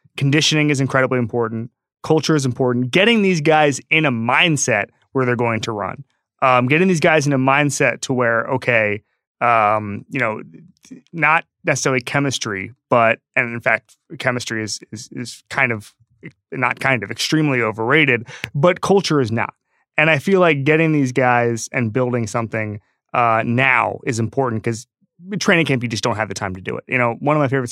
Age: 30-49